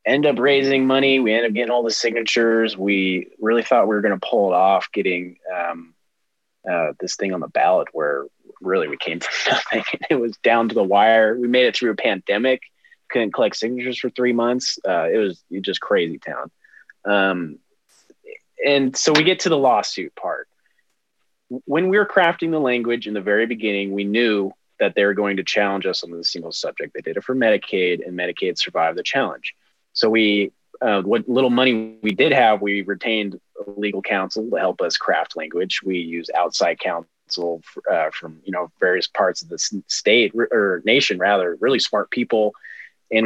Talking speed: 195 wpm